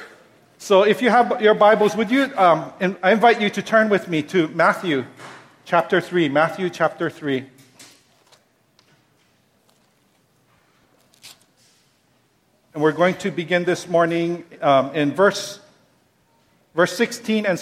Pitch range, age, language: 155-210 Hz, 50-69, English